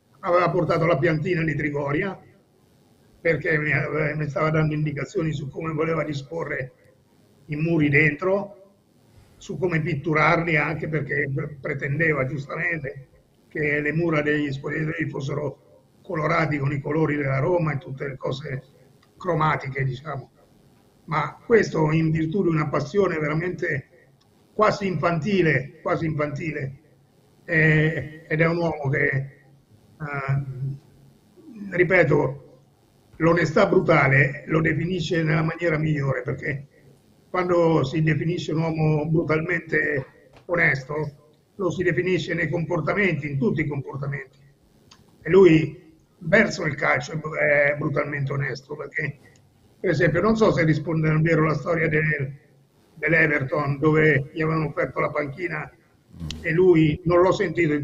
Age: 50-69